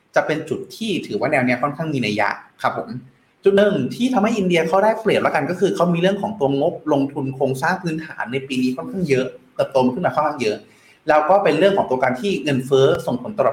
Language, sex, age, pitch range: Thai, male, 30-49, 135-195 Hz